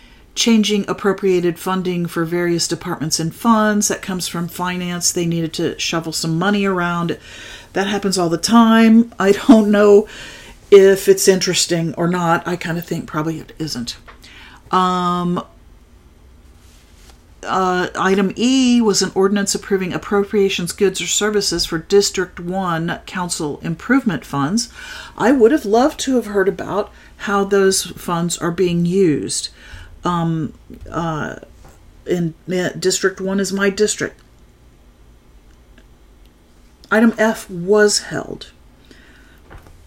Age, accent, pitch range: 50-69, American, 160-200 Hz